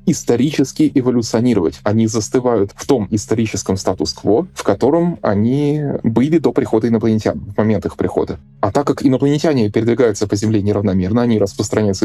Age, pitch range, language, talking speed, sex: 20-39, 100-130 Hz, Russian, 145 wpm, male